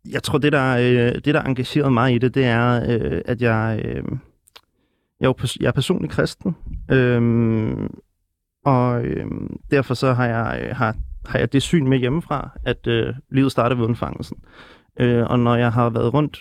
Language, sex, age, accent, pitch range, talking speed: Danish, male, 30-49, native, 115-135 Hz, 155 wpm